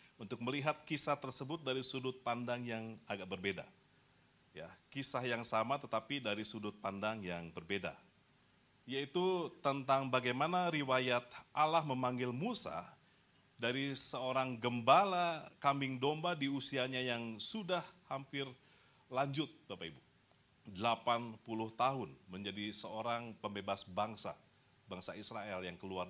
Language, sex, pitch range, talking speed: Indonesian, male, 110-150 Hz, 115 wpm